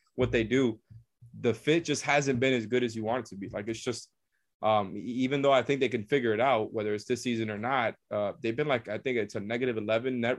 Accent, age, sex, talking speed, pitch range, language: American, 20-39, male, 265 wpm, 110-125 Hz, English